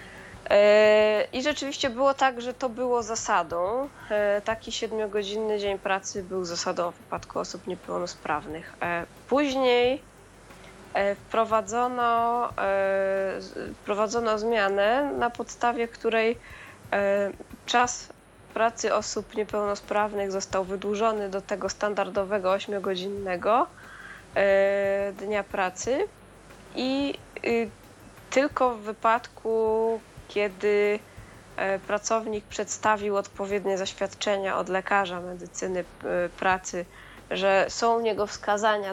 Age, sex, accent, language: 20-39, female, native, Polish